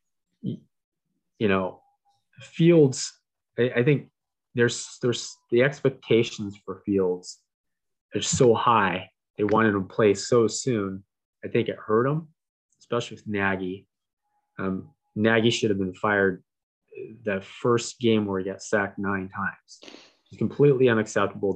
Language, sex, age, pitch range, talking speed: English, male, 20-39, 100-135 Hz, 135 wpm